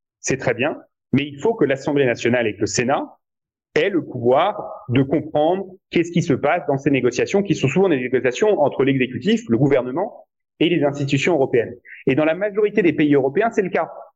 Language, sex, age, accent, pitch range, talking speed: French, male, 30-49, French, 125-190 Hz, 205 wpm